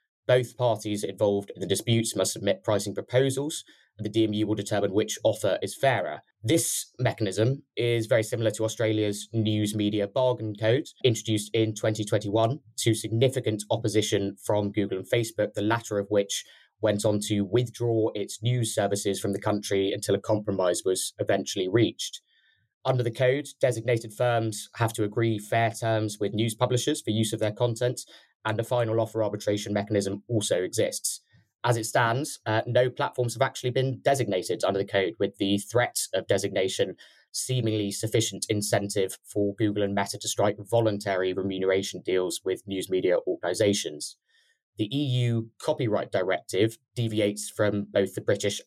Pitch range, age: 105-120 Hz, 20-39